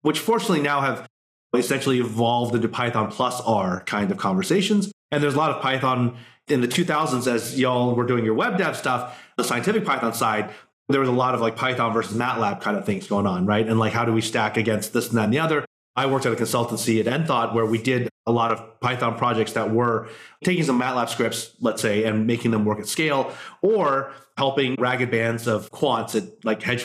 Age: 30-49